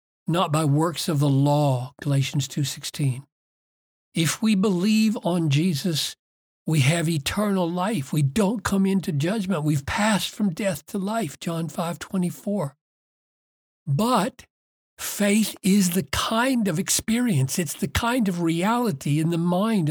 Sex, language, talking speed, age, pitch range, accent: male, English, 135 wpm, 60-79, 150-210 Hz, American